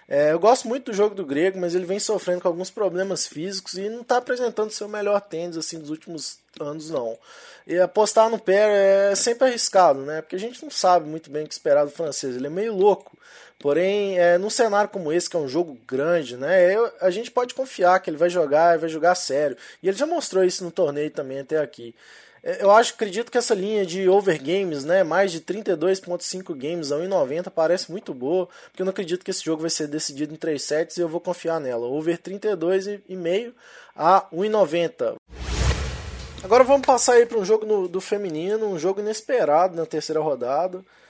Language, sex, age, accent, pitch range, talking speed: Portuguese, male, 20-39, Brazilian, 155-210 Hz, 210 wpm